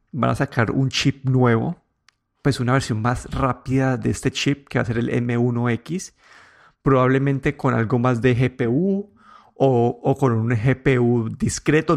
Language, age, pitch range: Spanish, 30-49, 125-140 Hz